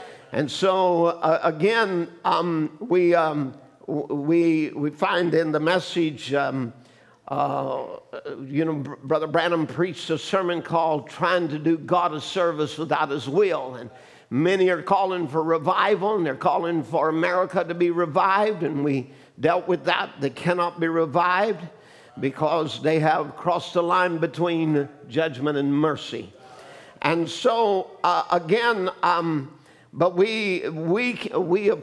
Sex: male